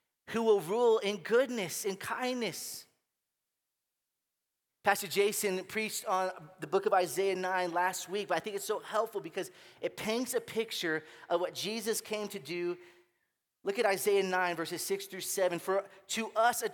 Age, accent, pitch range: 30-49, American, 135-210 Hz